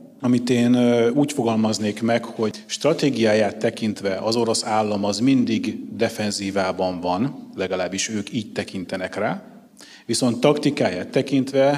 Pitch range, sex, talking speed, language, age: 100-130 Hz, male, 115 wpm, Hungarian, 30-49